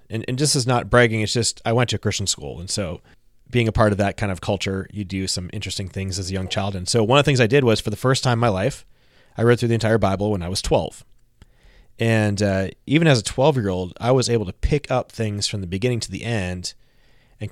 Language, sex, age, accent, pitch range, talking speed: English, male, 30-49, American, 100-120 Hz, 280 wpm